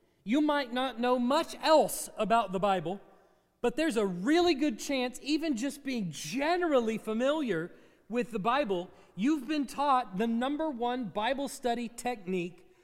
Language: English